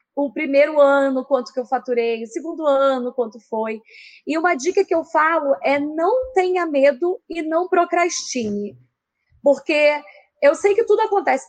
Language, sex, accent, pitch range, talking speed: Portuguese, female, Brazilian, 265-360 Hz, 160 wpm